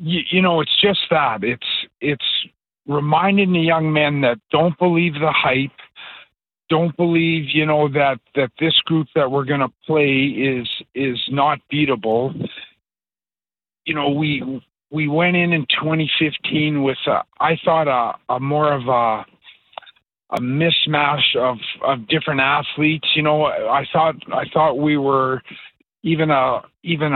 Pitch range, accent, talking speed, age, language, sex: 135-165 Hz, American, 150 wpm, 50-69, English, male